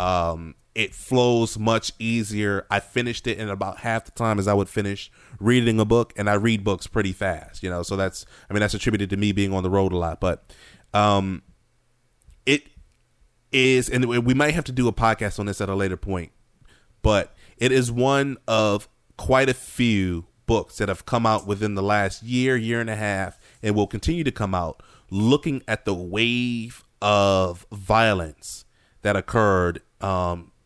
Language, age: English, 30-49